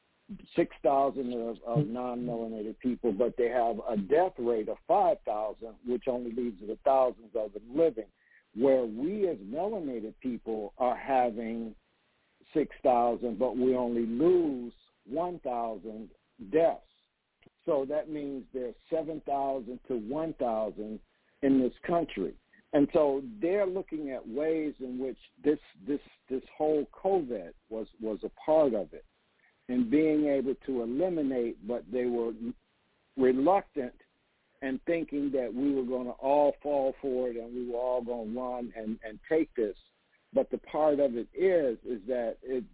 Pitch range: 120-145 Hz